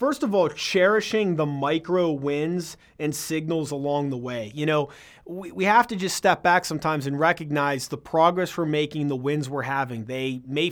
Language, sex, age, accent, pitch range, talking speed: English, male, 30-49, American, 140-165 Hz, 190 wpm